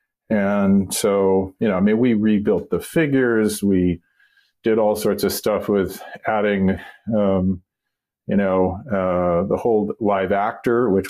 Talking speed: 145 wpm